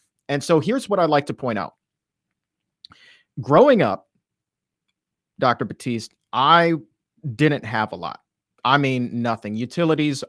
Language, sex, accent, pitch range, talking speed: English, male, American, 115-145 Hz, 130 wpm